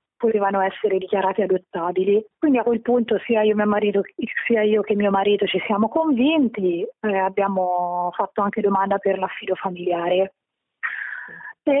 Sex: female